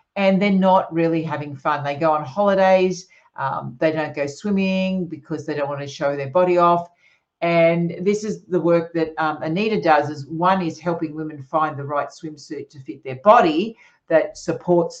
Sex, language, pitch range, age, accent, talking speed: female, English, 155-180 Hz, 50-69, Australian, 190 wpm